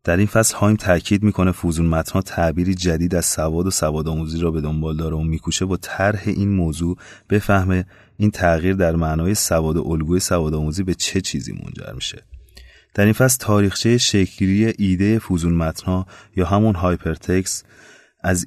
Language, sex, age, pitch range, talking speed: Persian, male, 30-49, 85-100 Hz, 160 wpm